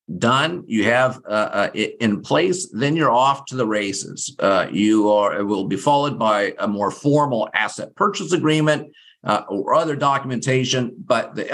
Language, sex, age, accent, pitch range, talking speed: English, male, 50-69, American, 105-135 Hz, 175 wpm